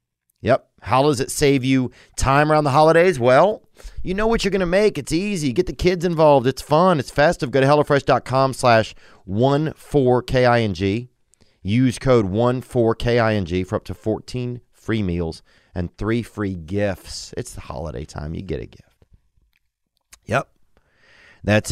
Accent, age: American, 30-49